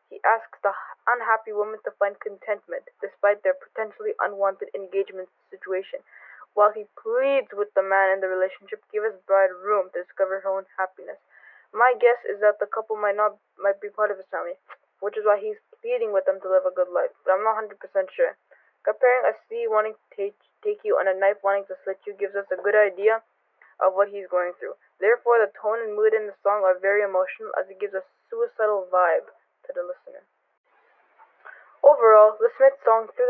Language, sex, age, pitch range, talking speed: English, female, 10-29, 200-295 Hz, 205 wpm